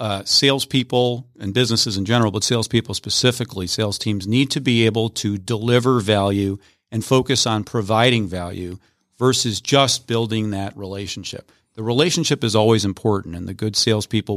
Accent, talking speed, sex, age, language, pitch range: American, 155 wpm, male, 40-59, English, 105-125 Hz